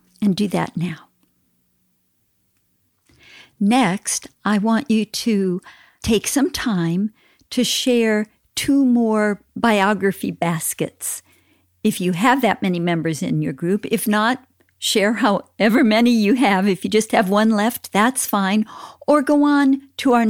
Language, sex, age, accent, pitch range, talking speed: English, female, 50-69, American, 175-240 Hz, 140 wpm